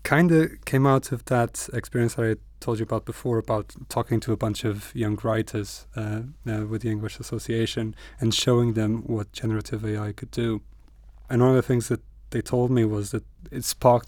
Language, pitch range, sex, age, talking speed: English, 110-120 Hz, male, 20-39, 205 wpm